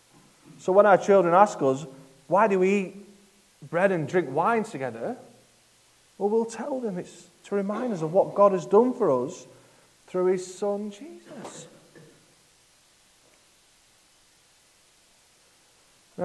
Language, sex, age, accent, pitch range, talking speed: English, male, 30-49, British, 155-200 Hz, 130 wpm